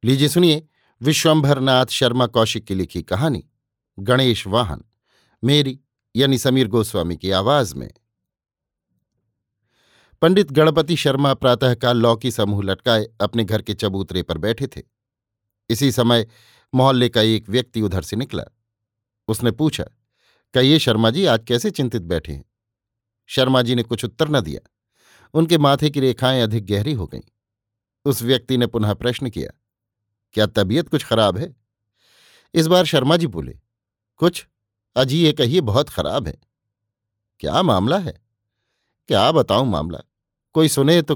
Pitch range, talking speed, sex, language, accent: 110-140 Hz, 145 wpm, male, Hindi, native